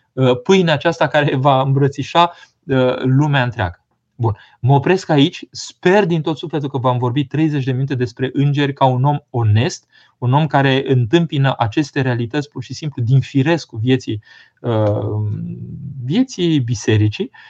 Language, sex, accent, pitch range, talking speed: Romanian, male, native, 120-150 Hz, 145 wpm